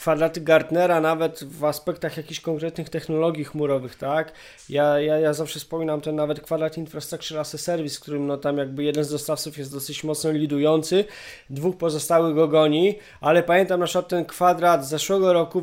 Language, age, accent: Polish, 20-39, native